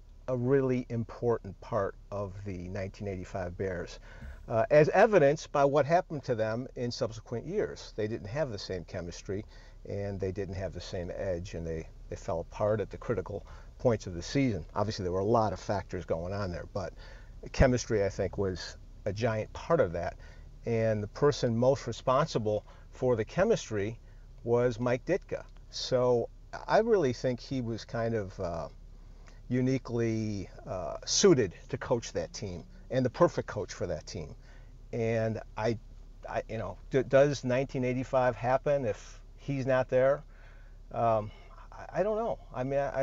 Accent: American